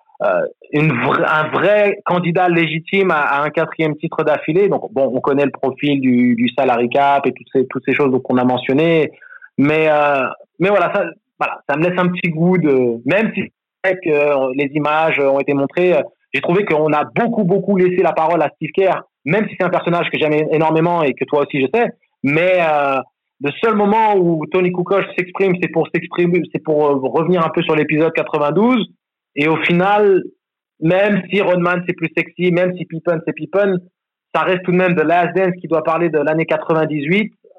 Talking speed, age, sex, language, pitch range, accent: 205 wpm, 30-49, male, French, 145-180 Hz, French